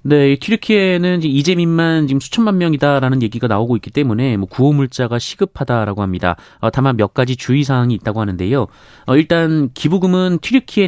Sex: male